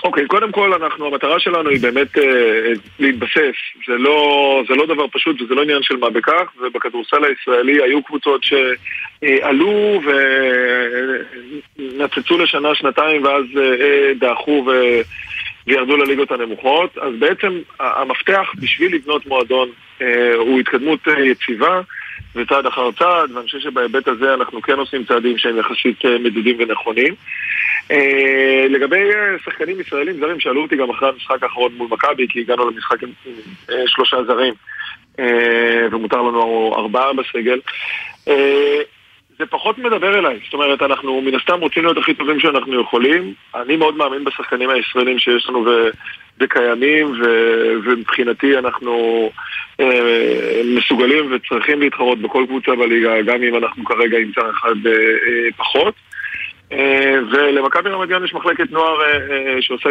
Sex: male